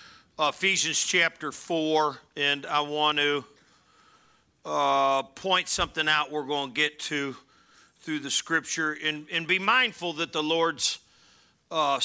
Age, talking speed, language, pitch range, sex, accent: 50-69, 135 wpm, English, 140-165 Hz, male, American